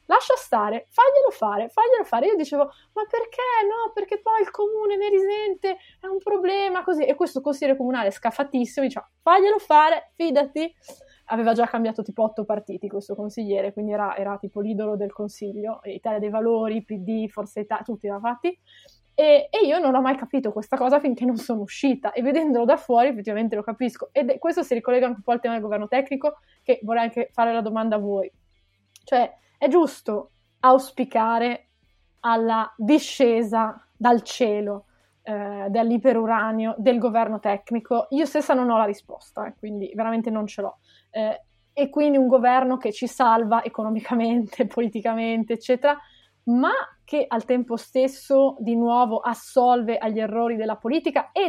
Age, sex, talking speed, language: 20-39, female, 165 wpm, Italian